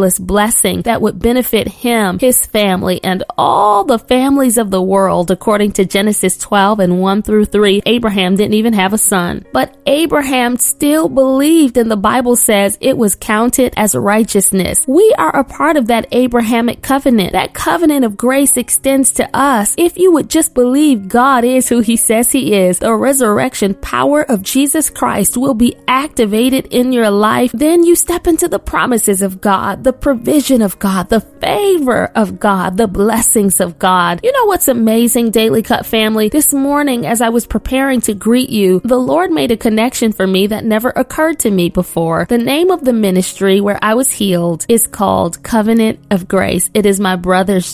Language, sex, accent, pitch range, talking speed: English, female, American, 200-255 Hz, 185 wpm